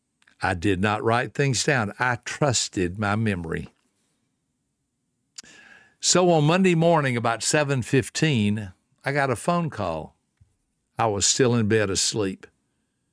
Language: English